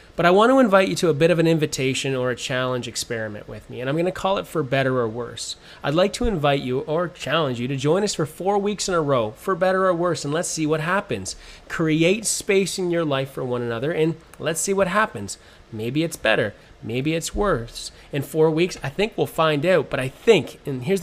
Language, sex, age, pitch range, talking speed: English, male, 30-49, 125-175 Hz, 245 wpm